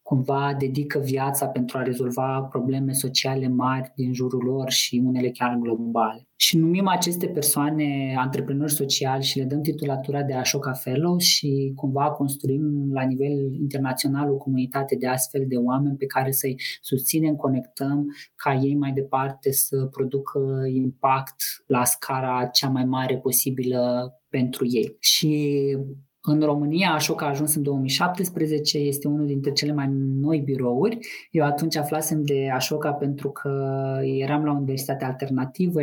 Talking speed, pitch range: 145 wpm, 130-150 Hz